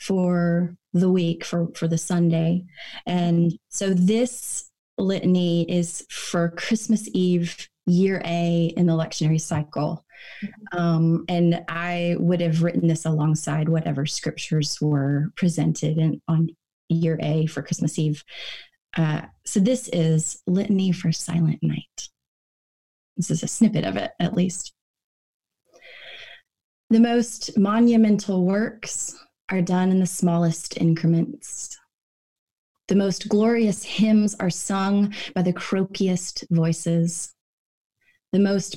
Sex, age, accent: female, 20-39, American